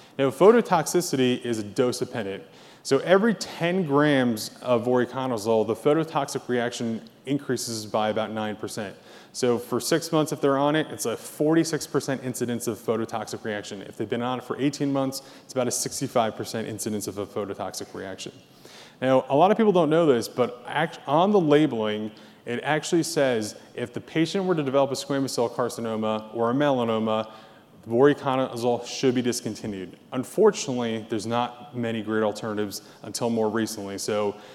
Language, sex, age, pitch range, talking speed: English, male, 20-39, 110-135 Hz, 160 wpm